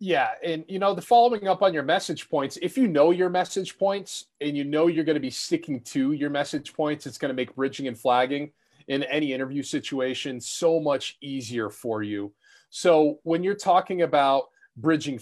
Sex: male